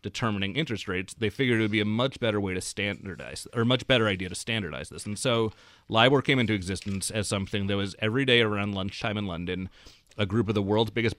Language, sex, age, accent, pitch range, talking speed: English, male, 30-49, American, 95-115 Hz, 230 wpm